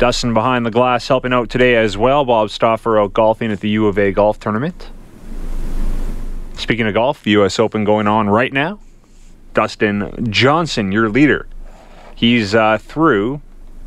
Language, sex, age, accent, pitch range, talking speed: English, male, 30-49, American, 105-130 Hz, 155 wpm